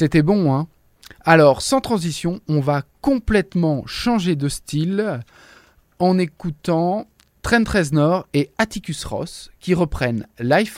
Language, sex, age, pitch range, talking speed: French, male, 20-39, 130-175 Hz, 120 wpm